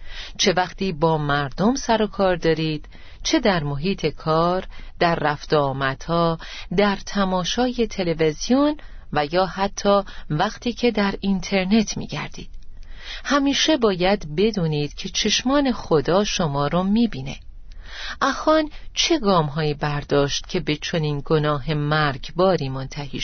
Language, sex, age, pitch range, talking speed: Persian, female, 40-59, 150-215 Hz, 120 wpm